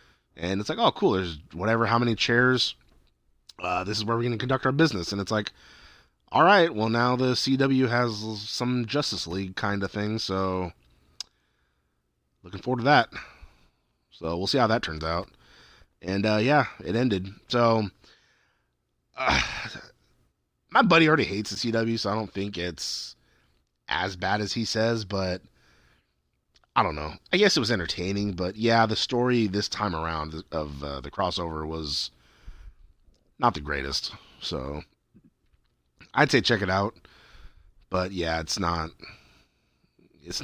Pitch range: 75-110 Hz